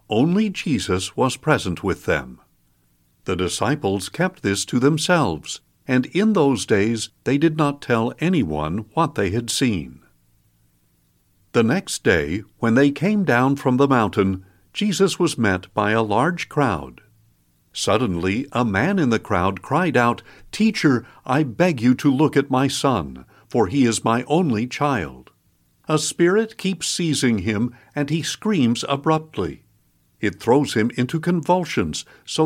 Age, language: 60-79, English